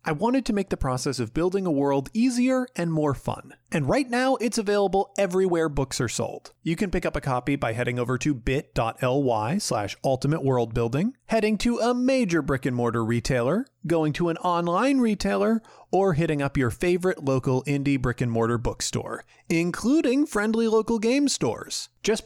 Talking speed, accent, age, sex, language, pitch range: 165 wpm, American, 30-49, male, English, 135-215 Hz